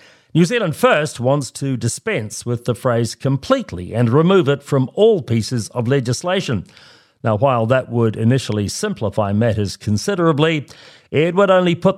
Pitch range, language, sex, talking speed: 115-165 Hz, English, male, 150 wpm